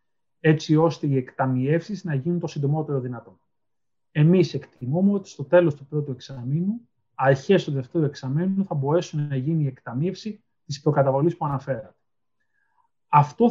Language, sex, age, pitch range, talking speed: Greek, male, 30-49, 135-175 Hz, 140 wpm